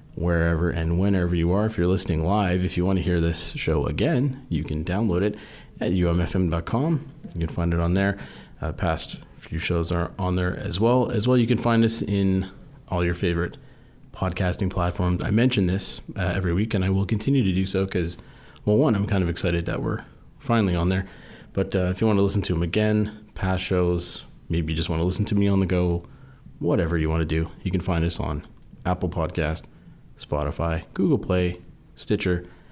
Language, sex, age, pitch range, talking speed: English, male, 40-59, 85-105 Hz, 210 wpm